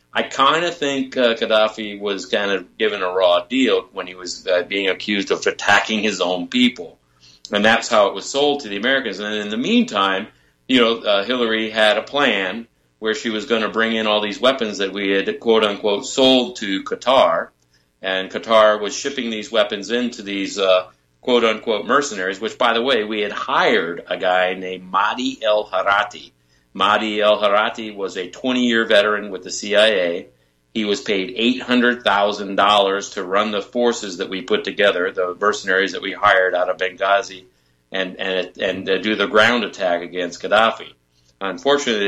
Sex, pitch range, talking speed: male, 90-110 Hz, 180 wpm